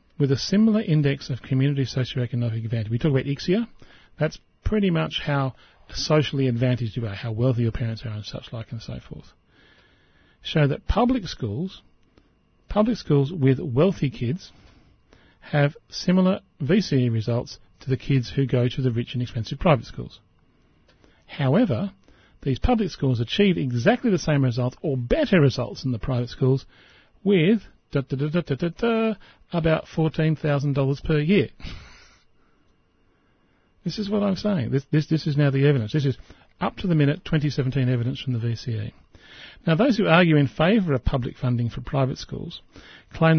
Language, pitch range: English, 125-165 Hz